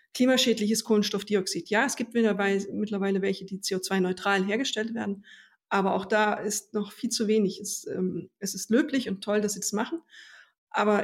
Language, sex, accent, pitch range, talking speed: German, female, German, 190-220 Hz, 165 wpm